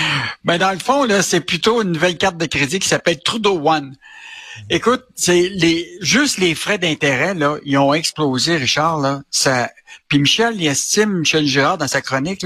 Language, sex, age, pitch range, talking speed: French, male, 60-79, 145-195 Hz, 190 wpm